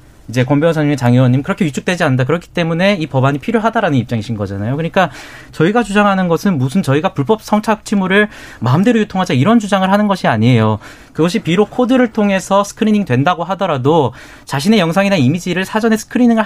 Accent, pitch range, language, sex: native, 140-205 Hz, Korean, male